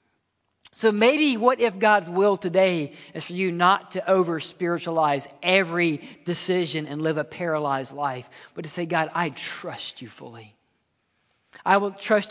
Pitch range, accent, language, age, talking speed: 145-195 Hz, American, English, 40-59, 150 wpm